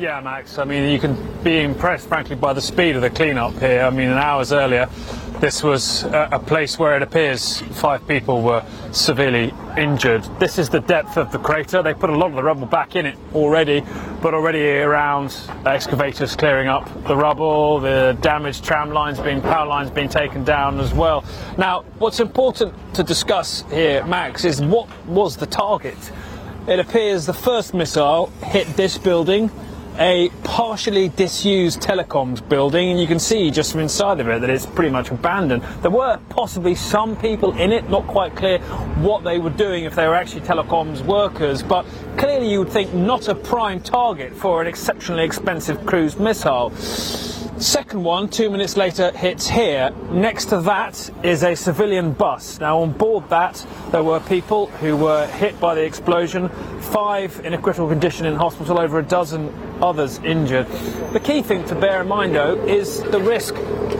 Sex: male